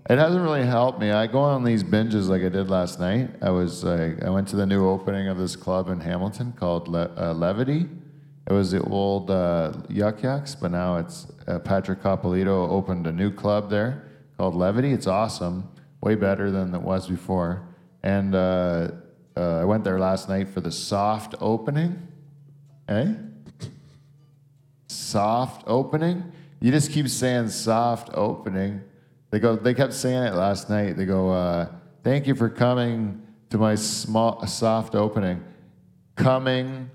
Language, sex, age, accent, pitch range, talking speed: English, male, 40-59, American, 95-135 Hz, 165 wpm